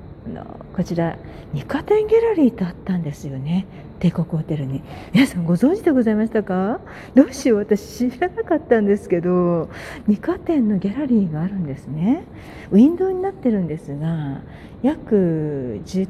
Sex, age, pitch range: female, 40-59, 175-260 Hz